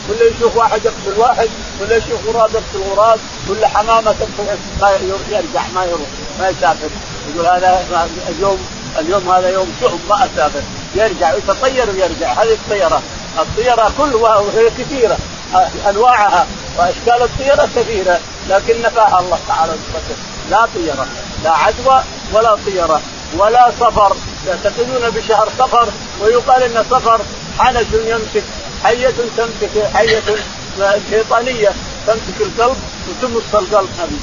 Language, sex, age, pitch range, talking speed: Arabic, male, 50-69, 195-230 Hz, 120 wpm